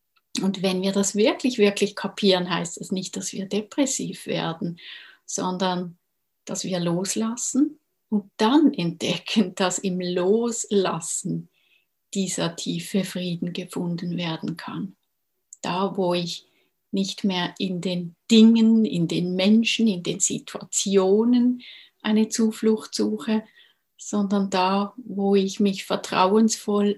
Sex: female